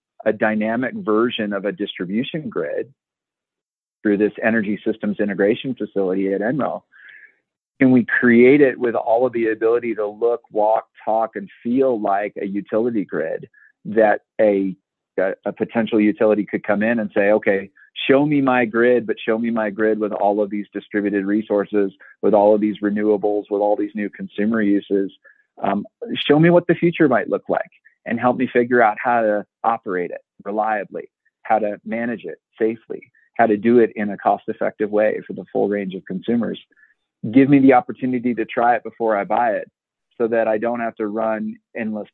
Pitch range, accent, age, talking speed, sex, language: 100-115 Hz, American, 40-59, 185 wpm, male, English